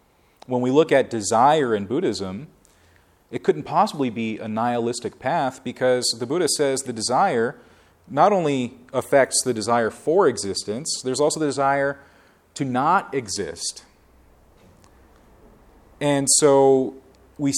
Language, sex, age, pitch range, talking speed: English, male, 30-49, 100-125 Hz, 125 wpm